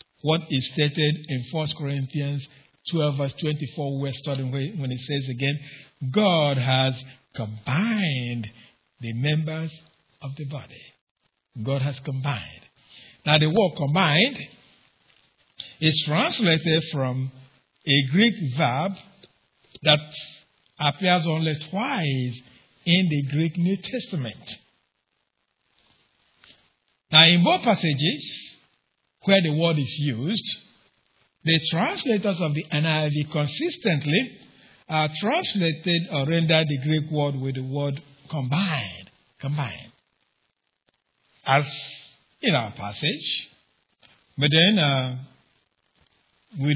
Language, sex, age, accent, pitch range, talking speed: English, male, 60-79, Nigerian, 135-160 Hz, 105 wpm